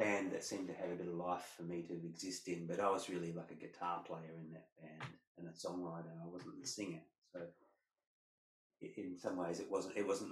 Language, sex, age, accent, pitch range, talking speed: English, male, 30-49, Australian, 85-95 Hz, 240 wpm